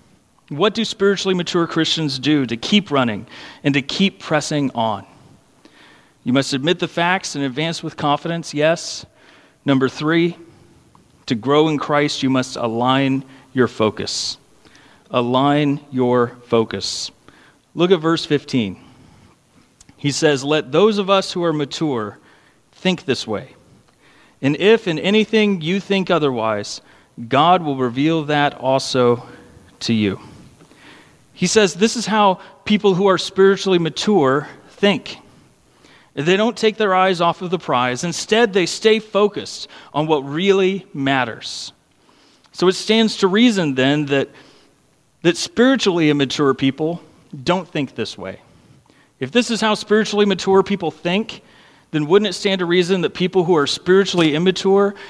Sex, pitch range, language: male, 140-195 Hz, English